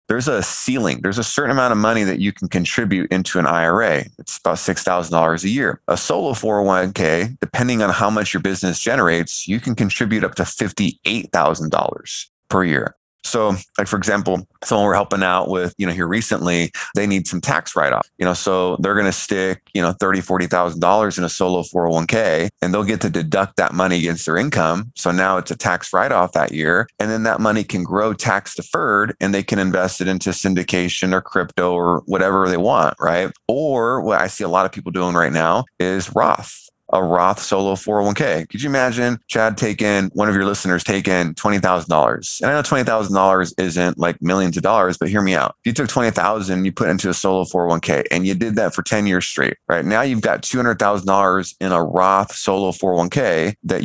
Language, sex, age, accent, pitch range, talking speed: English, male, 20-39, American, 90-105 Hz, 205 wpm